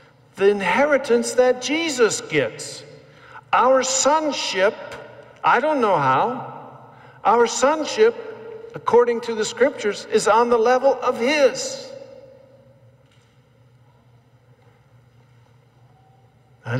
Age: 50-69